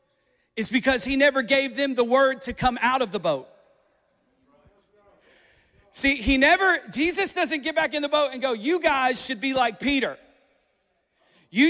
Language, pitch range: English, 260-305 Hz